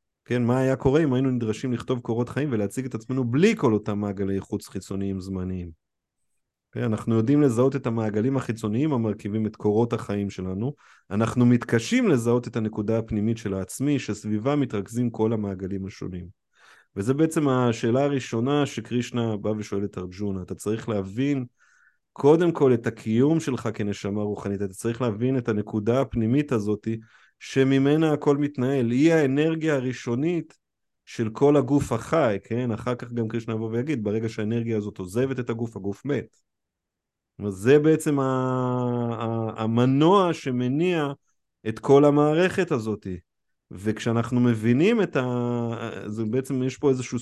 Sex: male